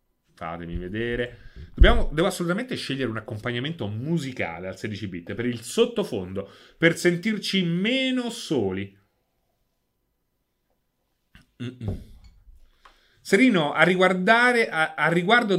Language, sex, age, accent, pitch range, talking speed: Italian, male, 30-49, native, 115-165 Hz, 90 wpm